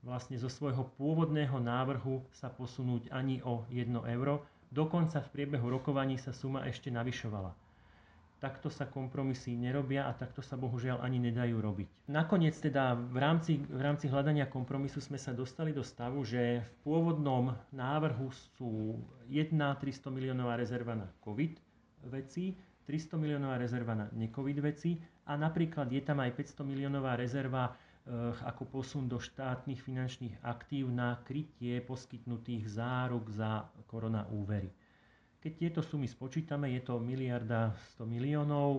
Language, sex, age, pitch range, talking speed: Slovak, male, 30-49, 120-145 Hz, 140 wpm